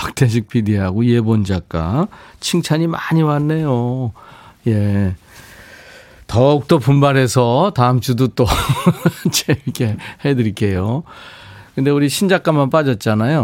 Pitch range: 115-155 Hz